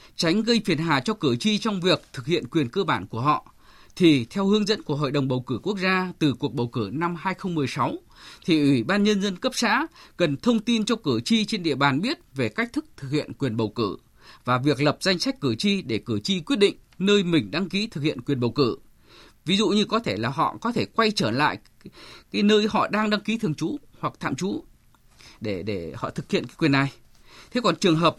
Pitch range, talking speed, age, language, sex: 145-205 Hz, 245 wpm, 20-39, Vietnamese, male